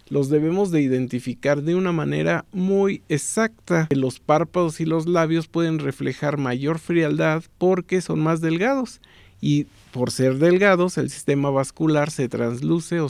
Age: 50-69